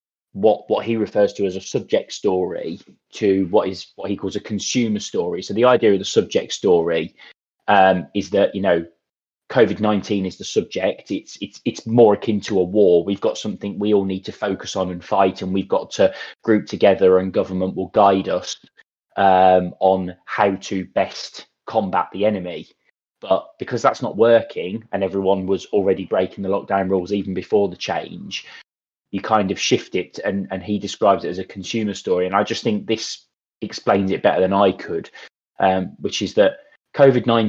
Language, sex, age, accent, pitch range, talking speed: English, male, 20-39, British, 95-110 Hz, 190 wpm